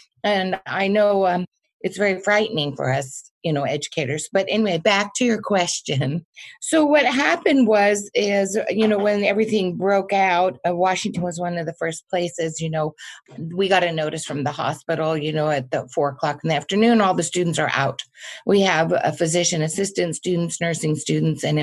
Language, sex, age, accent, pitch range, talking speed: English, female, 50-69, American, 165-210 Hz, 190 wpm